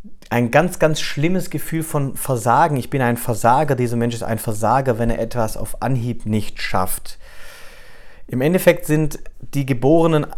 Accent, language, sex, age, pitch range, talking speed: German, German, male, 40-59, 115-140 Hz, 160 wpm